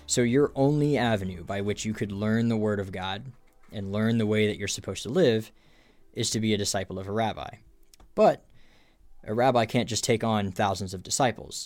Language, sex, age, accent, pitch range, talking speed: English, male, 10-29, American, 100-115 Hz, 205 wpm